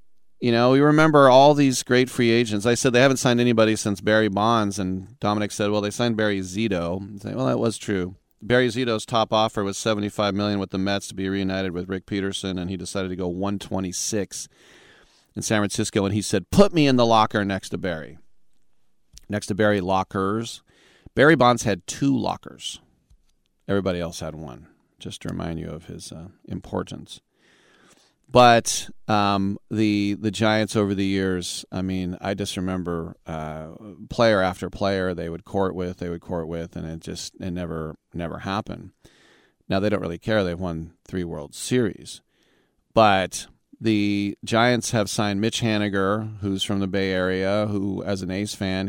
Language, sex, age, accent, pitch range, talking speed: English, male, 40-59, American, 95-110 Hz, 185 wpm